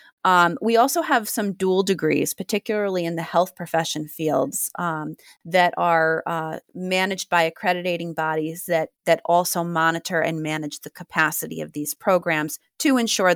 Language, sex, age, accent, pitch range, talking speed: English, female, 30-49, American, 160-190 Hz, 155 wpm